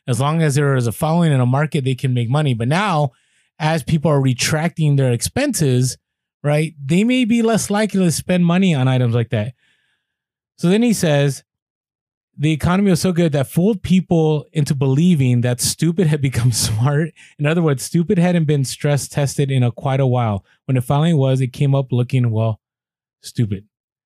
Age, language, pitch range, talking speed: 20-39, English, 125-160 Hz, 190 wpm